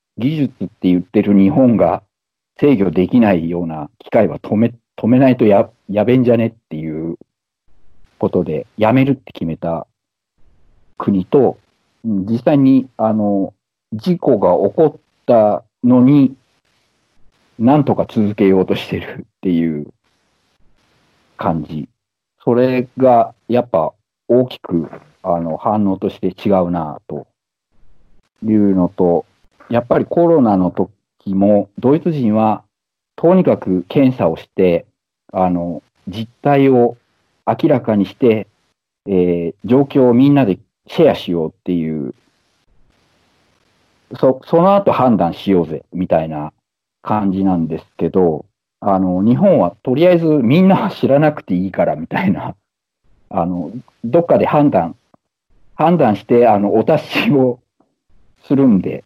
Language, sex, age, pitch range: English, male, 50-69, 90-125 Hz